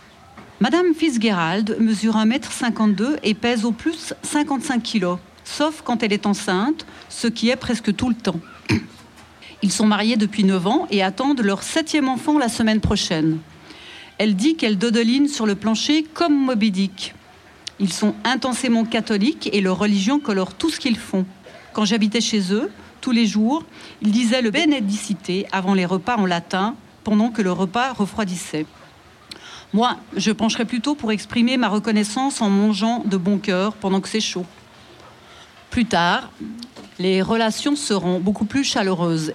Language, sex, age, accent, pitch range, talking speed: French, female, 40-59, French, 190-235 Hz, 160 wpm